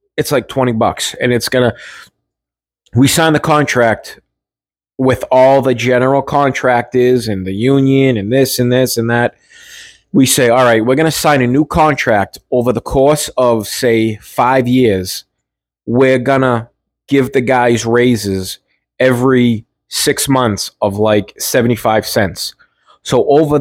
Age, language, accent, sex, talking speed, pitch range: 20-39, English, American, male, 155 wpm, 120-140 Hz